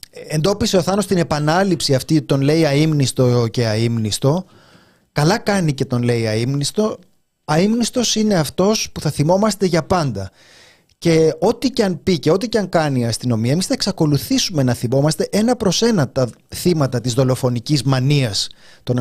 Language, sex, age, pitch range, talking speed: Greek, male, 30-49, 135-200 Hz, 160 wpm